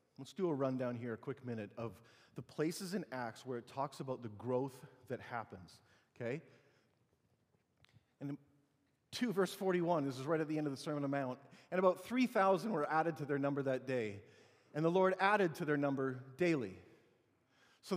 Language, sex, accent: English, male, American